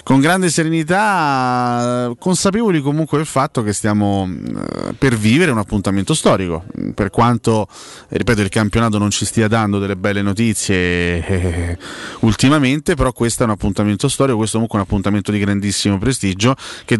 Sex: male